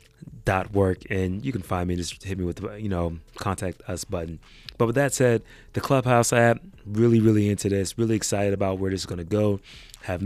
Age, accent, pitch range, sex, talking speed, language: 30-49, American, 95-110 Hz, male, 215 wpm, English